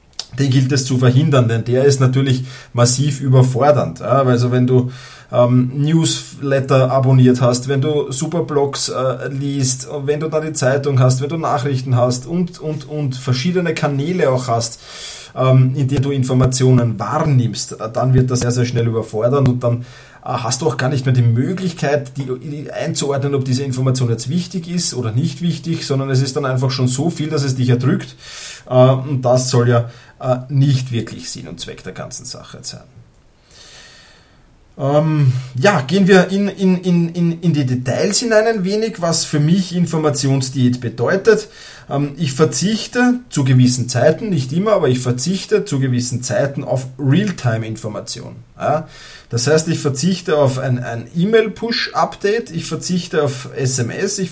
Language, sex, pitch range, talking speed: German, male, 125-165 Hz, 155 wpm